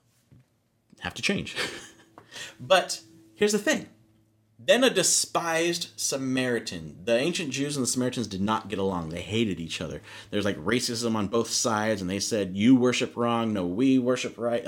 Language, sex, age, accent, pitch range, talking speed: English, male, 30-49, American, 115-180 Hz, 170 wpm